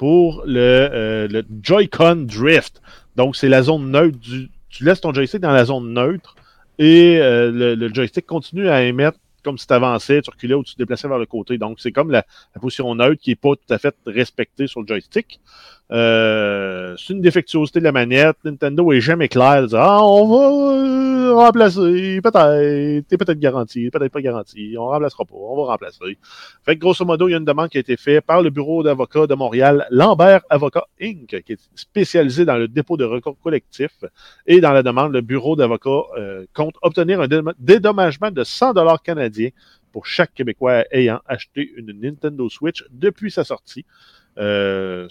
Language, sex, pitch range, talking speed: French, male, 125-170 Hz, 195 wpm